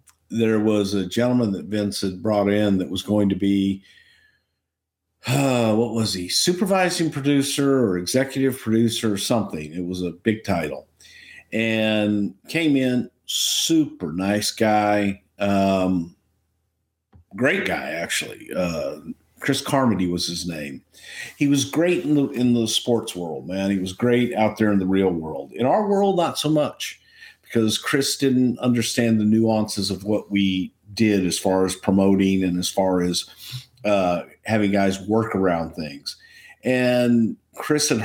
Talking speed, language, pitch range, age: 155 wpm, English, 95-130 Hz, 50-69